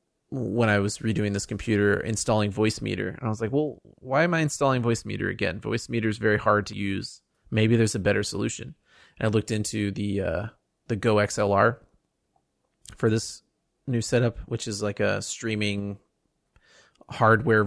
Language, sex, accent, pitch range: English, male, American, 105-125 Hz